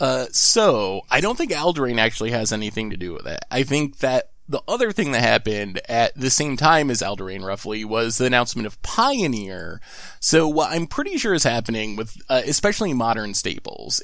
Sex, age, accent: male, 20-39, American